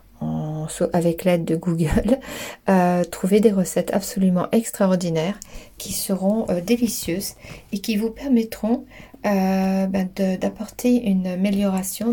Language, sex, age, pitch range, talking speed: French, female, 40-59, 175-210 Hz, 120 wpm